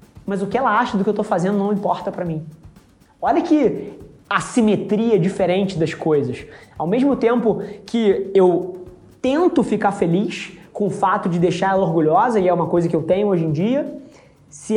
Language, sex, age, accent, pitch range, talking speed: Portuguese, male, 20-39, Brazilian, 170-210 Hz, 185 wpm